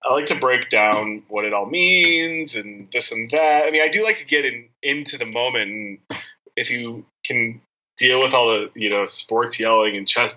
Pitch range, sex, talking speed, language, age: 105-130 Hz, male, 215 wpm, English, 20-39